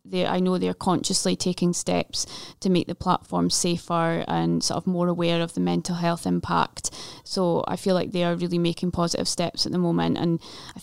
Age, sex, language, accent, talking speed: 20-39, female, English, British, 205 wpm